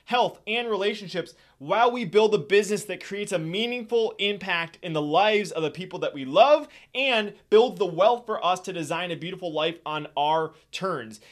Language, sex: English, male